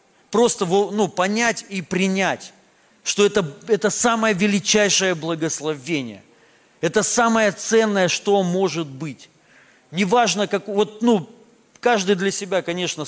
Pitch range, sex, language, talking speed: 135-185 Hz, male, Russian, 115 wpm